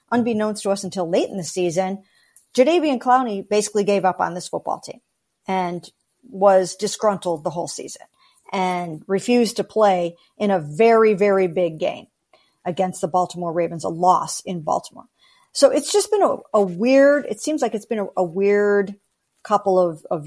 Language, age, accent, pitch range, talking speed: English, 50-69, American, 185-235 Hz, 175 wpm